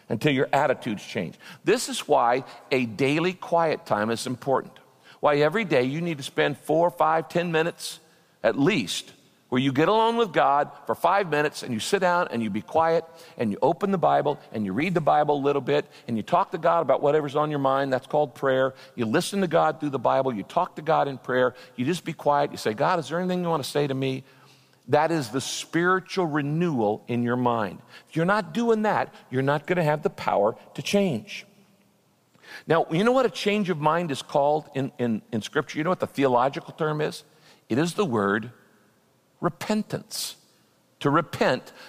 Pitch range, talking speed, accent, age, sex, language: 135-175 Hz, 210 wpm, American, 50-69, male, English